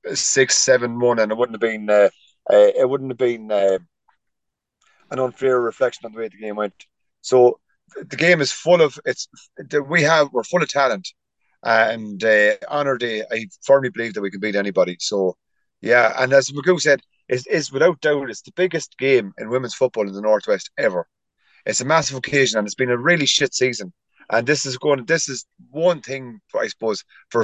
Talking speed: 200 wpm